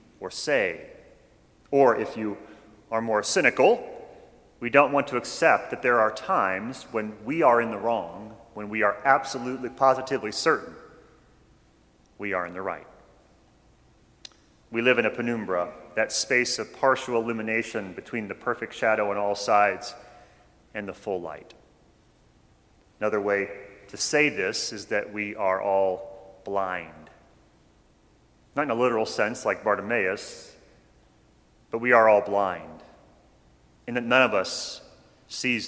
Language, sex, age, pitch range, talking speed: English, male, 30-49, 100-120 Hz, 140 wpm